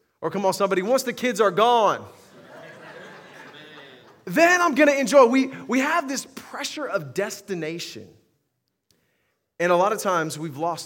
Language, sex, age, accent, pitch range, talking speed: English, male, 30-49, American, 160-220 Hz, 155 wpm